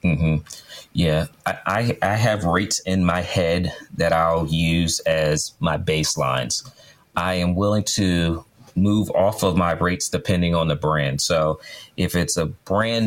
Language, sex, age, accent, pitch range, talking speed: English, male, 30-49, American, 85-100 Hz, 155 wpm